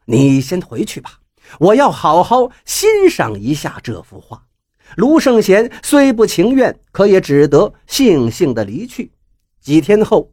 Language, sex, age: Chinese, male, 50-69